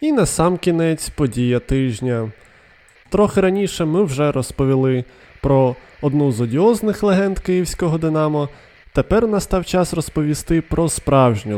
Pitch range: 130-180 Hz